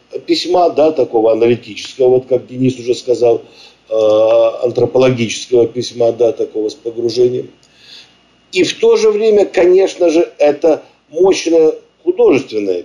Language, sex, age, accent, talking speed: Russian, male, 50-69, native, 120 wpm